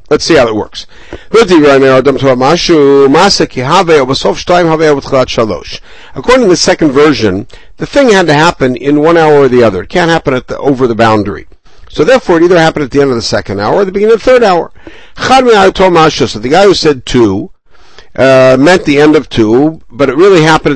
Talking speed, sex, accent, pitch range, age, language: 185 wpm, male, American, 135-185 Hz, 60-79, English